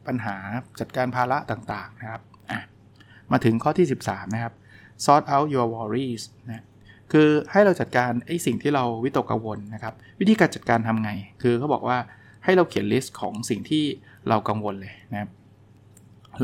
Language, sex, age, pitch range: Thai, male, 20-39, 110-140 Hz